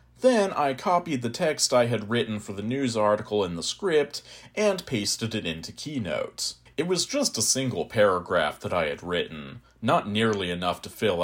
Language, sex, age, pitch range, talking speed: English, male, 40-59, 90-120 Hz, 185 wpm